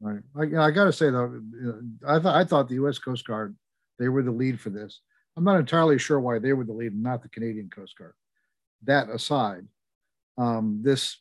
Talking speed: 230 wpm